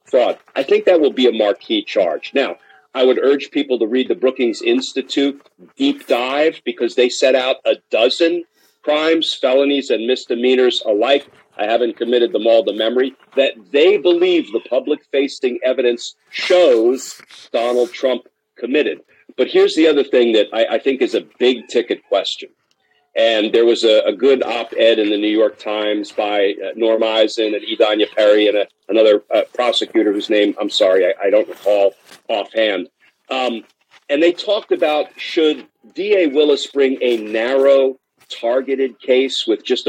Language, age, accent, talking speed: English, 50-69, American, 165 wpm